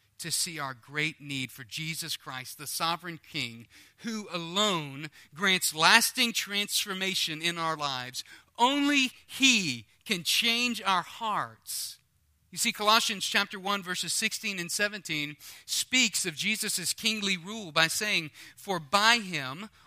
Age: 40-59